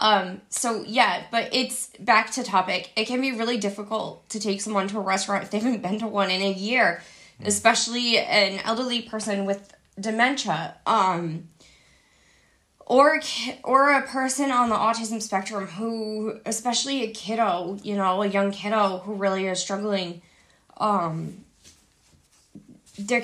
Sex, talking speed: female, 150 wpm